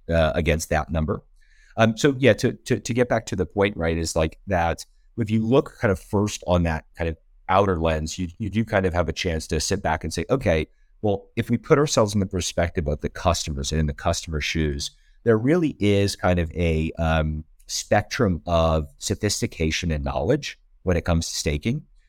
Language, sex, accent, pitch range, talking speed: English, male, American, 80-105 Hz, 210 wpm